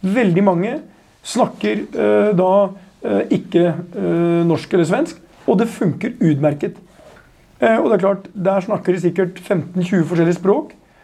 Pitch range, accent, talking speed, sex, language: 185-240 Hz, native, 145 wpm, male, Swedish